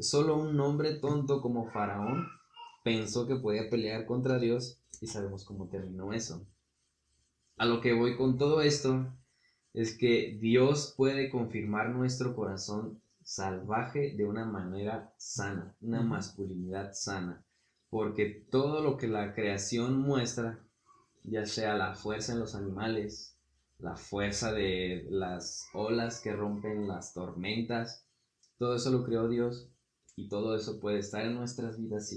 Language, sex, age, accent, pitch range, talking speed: Spanish, male, 20-39, Mexican, 100-120 Hz, 140 wpm